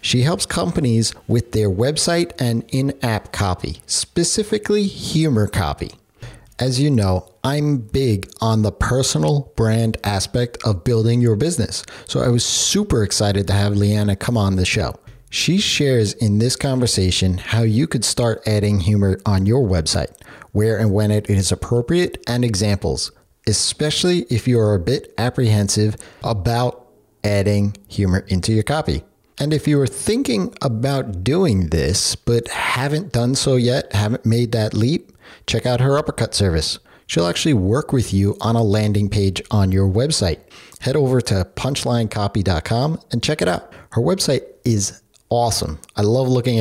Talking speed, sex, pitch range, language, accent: 155 wpm, male, 100-130 Hz, English, American